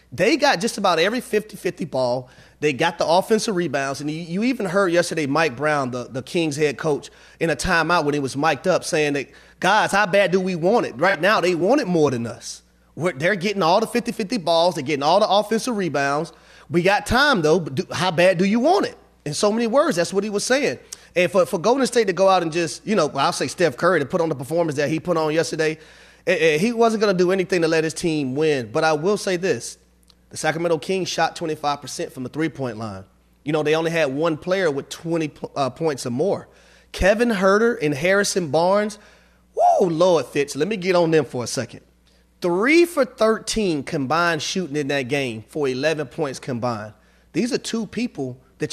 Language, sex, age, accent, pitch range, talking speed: English, male, 30-49, American, 150-195 Hz, 230 wpm